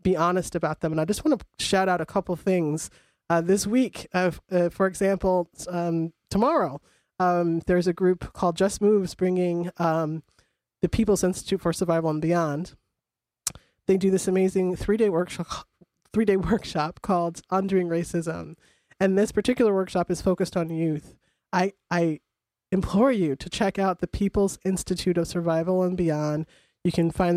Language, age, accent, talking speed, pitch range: English, 30-49, American, 165 wpm, 165-185 Hz